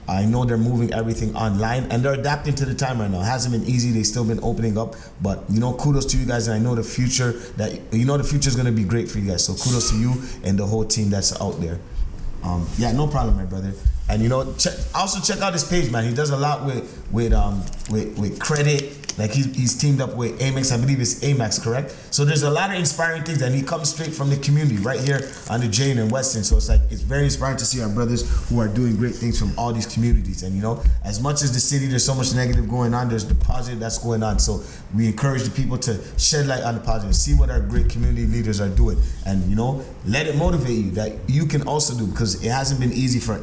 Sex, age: male, 30-49